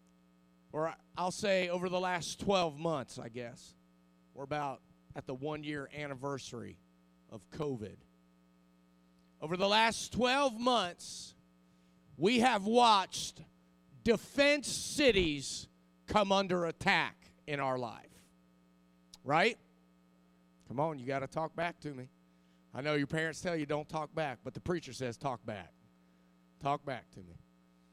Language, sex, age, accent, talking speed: English, male, 40-59, American, 140 wpm